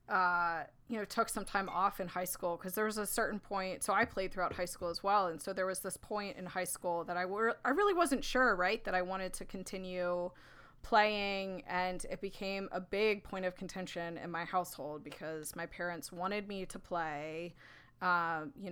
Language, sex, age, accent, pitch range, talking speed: English, female, 20-39, American, 180-220 Hz, 215 wpm